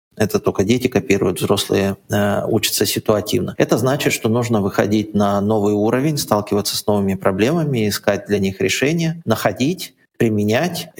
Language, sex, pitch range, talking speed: Russian, male, 100-125 Hz, 140 wpm